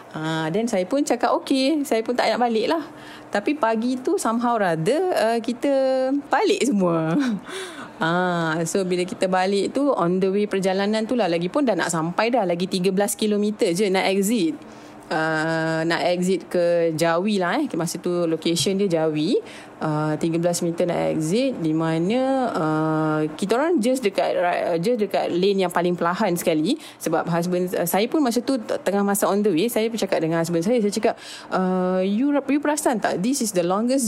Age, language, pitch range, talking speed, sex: 20-39, Malay, 170-230 Hz, 185 wpm, female